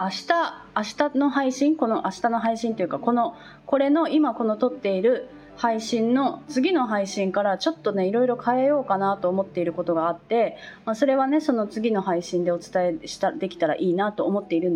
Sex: female